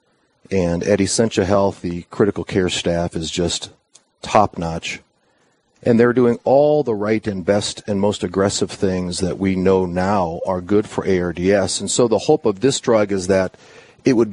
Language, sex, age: English, male, 40-59